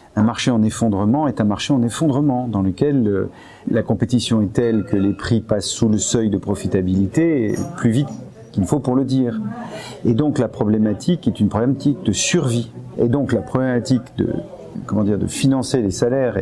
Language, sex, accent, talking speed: French, male, French, 185 wpm